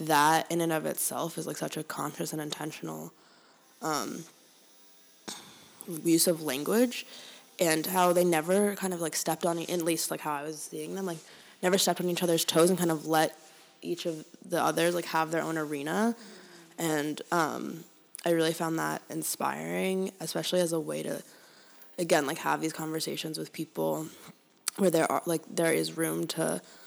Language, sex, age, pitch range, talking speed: English, female, 20-39, 160-185 Hz, 180 wpm